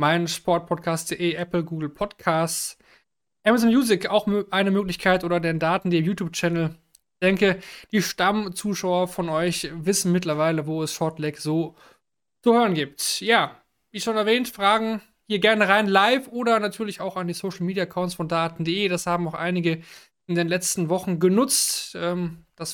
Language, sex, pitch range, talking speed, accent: German, male, 165-205 Hz, 155 wpm, German